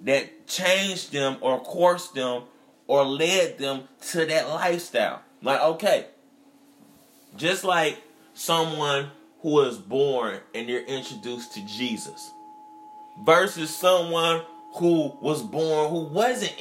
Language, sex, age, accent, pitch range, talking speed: English, male, 20-39, American, 155-225 Hz, 120 wpm